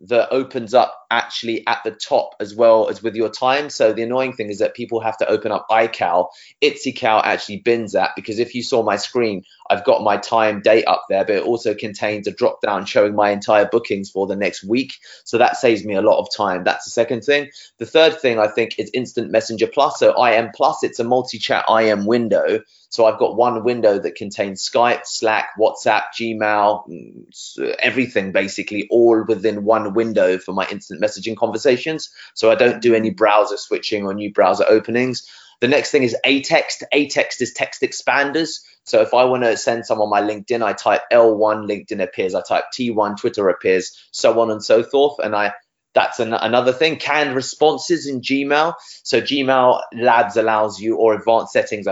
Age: 30-49